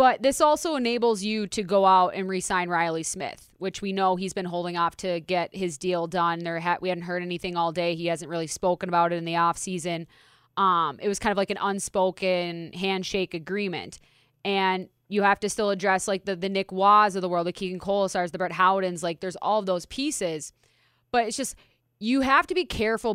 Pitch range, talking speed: 180-235 Hz, 220 wpm